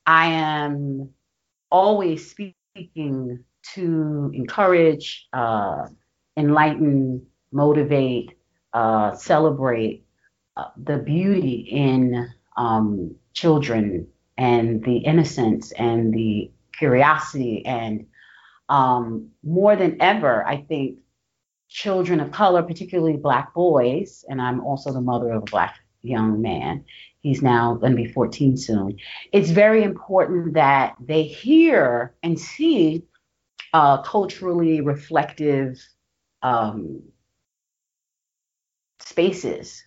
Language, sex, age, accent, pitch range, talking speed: English, female, 40-59, American, 125-165 Hz, 100 wpm